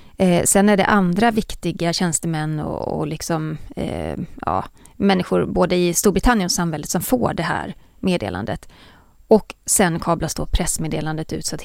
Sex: female